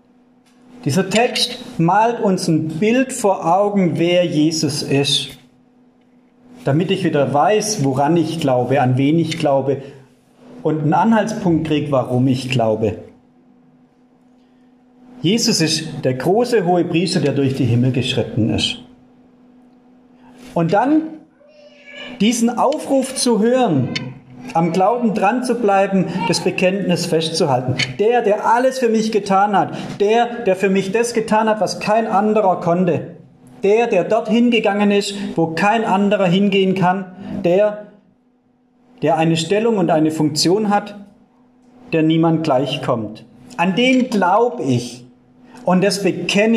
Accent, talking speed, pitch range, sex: German, 130 wpm, 160-245 Hz, male